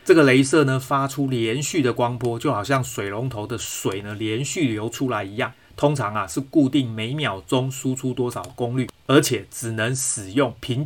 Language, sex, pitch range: Chinese, male, 115-140 Hz